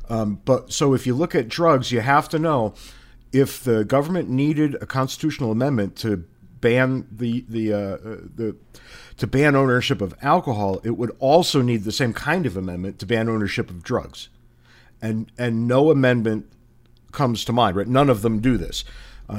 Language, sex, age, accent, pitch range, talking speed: English, male, 50-69, American, 105-130 Hz, 180 wpm